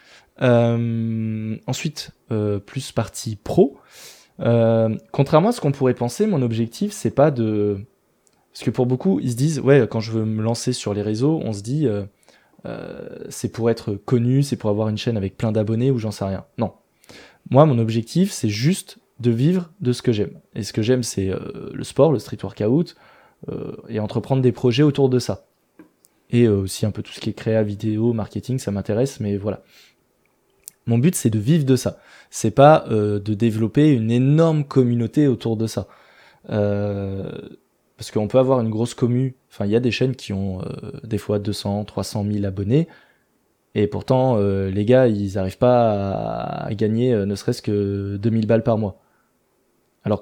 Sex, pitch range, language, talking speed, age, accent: male, 105-130 Hz, French, 190 wpm, 20-39, French